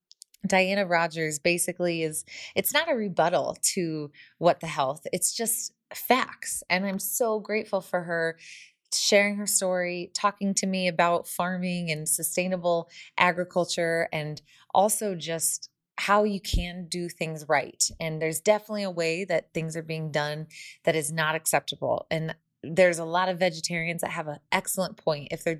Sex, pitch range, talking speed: female, 160-195 Hz, 160 wpm